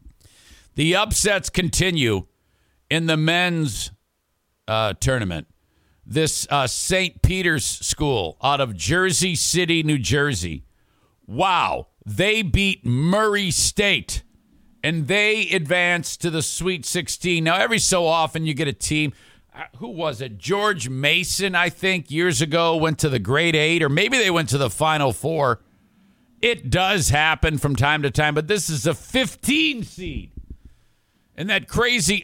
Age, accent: 50-69, American